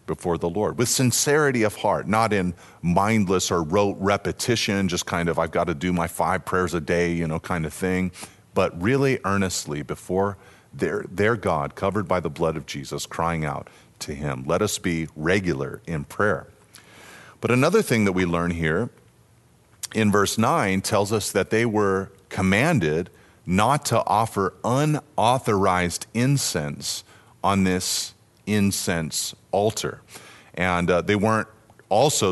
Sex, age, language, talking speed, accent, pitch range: male, 40-59, English, 155 wpm, American, 85-105 Hz